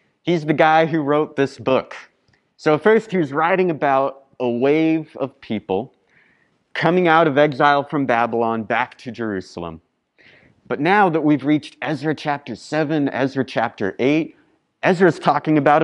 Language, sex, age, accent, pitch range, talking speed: English, male, 30-49, American, 120-155 Hz, 150 wpm